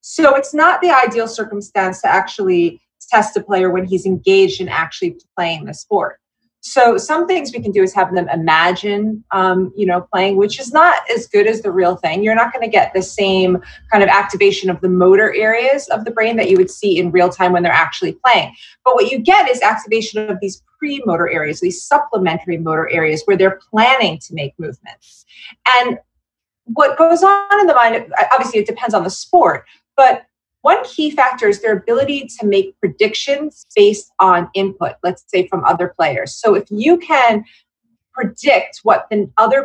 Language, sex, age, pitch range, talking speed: English, female, 30-49, 185-275 Hz, 190 wpm